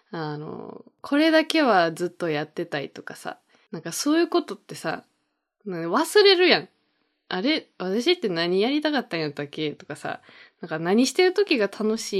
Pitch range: 175-285 Hz